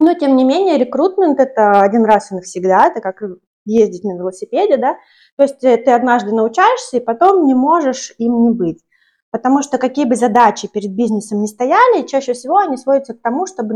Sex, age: female, 20-39